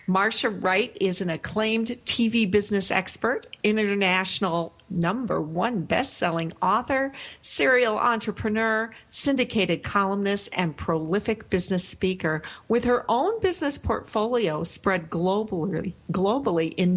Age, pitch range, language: 50-69, 180-225 Hz, English